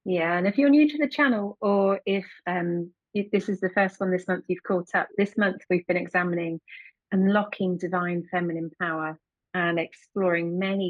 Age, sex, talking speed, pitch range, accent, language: 30-49, female, 185 wpm, 170-210 Hz, British, English